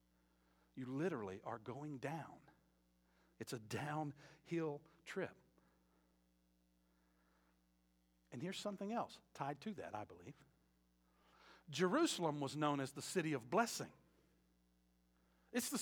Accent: American